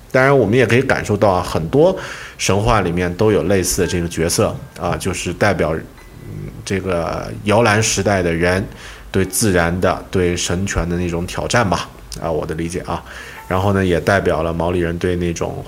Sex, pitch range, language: male, 90-115 Hz, Chinese